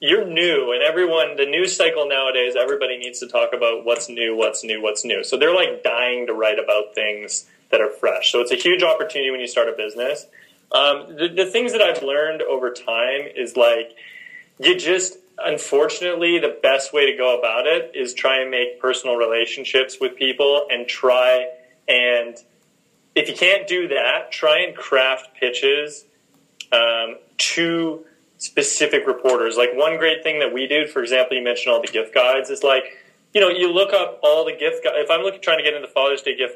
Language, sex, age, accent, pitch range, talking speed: English, male, 30-49, American, 125-195 Hz, 200 wpm